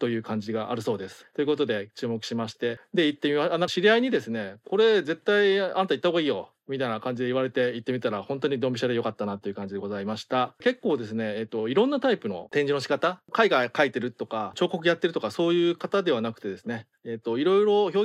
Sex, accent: male, native